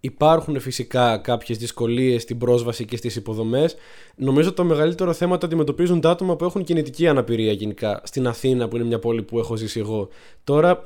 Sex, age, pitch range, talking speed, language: male, 20-39, 120-160 Hz, 190 wpm, Greek